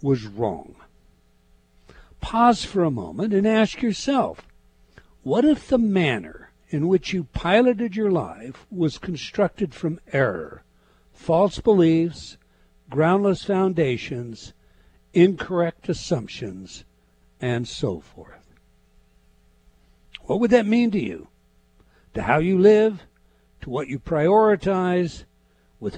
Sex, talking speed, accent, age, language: male, 110 wpm, American, 60-79, English